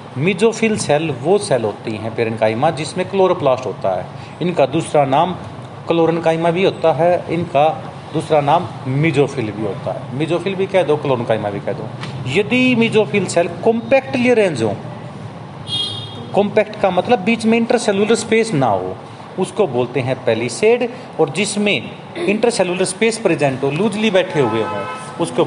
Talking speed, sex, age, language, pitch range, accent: 150 wpm, male, 40-59, Hindi, 130-190 Hz, native